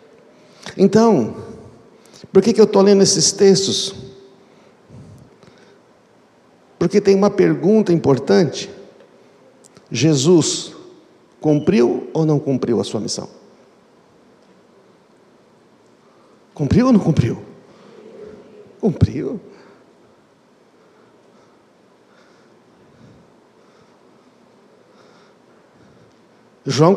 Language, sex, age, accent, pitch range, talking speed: Portuguese, male, 60-79, Brazilian, 150-195 Hz, 60 wpm